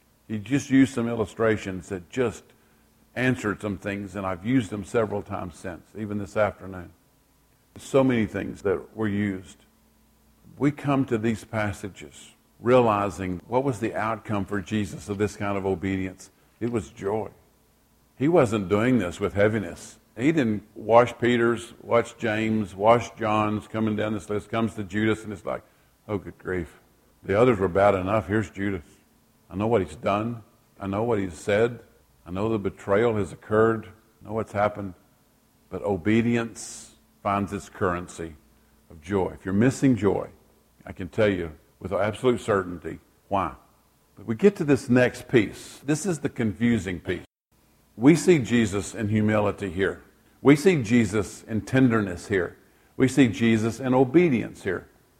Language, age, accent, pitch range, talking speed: English, 50-69, American, 100-120 Hz, 160 wpm